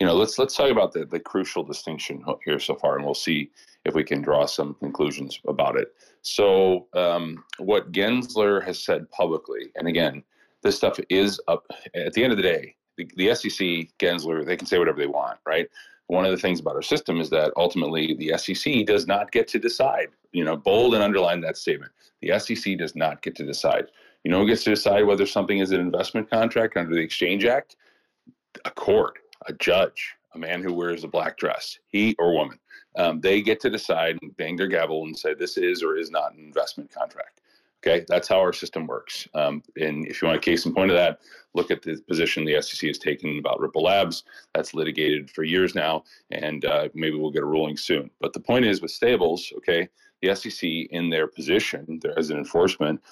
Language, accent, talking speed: English, American, 215 wpm